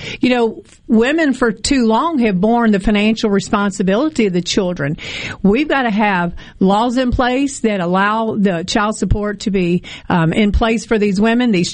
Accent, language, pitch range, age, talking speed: American, English, 200-250 Hz, 50-69, 180 wpm